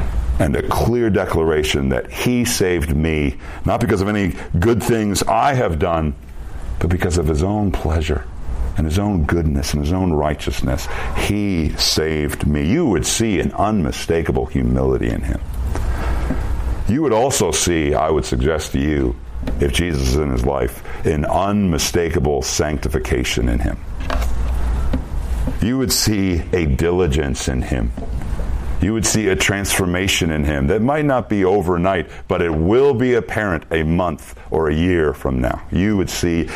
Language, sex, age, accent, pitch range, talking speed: English, male, 60-79, American, 70-90 Hz, 160 wpm